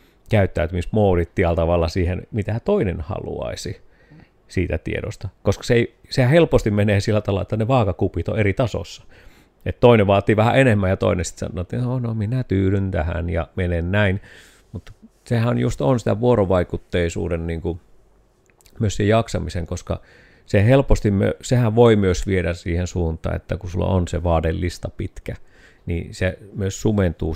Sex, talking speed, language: male, 160 wpm, Finnish